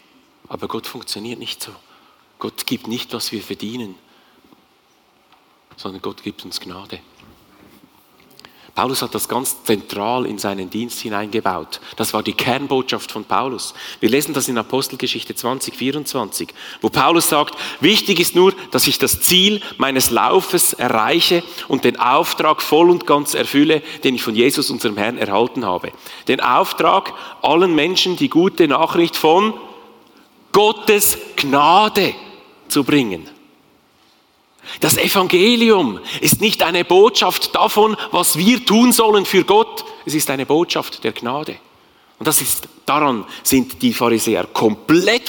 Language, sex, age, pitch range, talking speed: German, male, 40-59, 120-190 Hz, 135 wpm